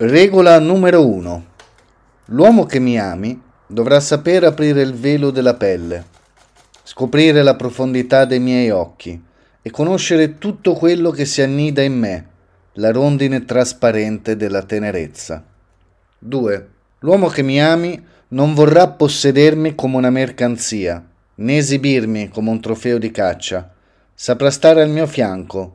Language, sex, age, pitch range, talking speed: Italian, male, 30-49, 105-145 Hz, 135 wpm